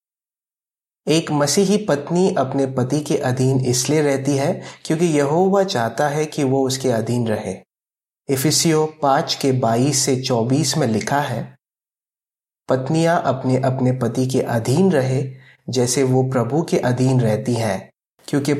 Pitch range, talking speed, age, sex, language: 125-155 Hz, 135 wpm, 30-49, male, Hindi